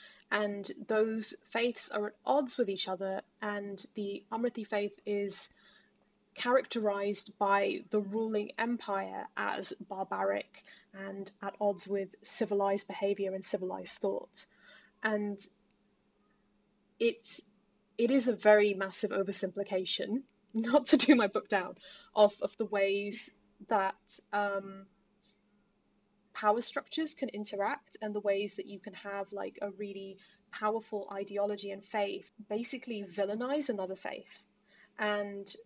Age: 10-29